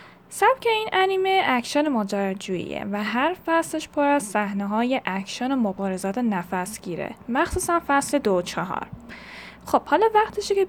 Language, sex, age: Persian, female, 10-29